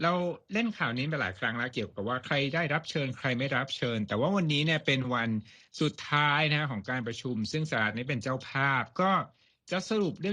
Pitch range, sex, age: 115-155 Hz, male, 60-79